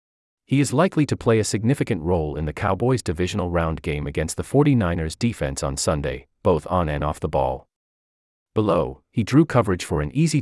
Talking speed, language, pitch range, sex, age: 190 wpm, English, 75-120 Hz, male, 30-49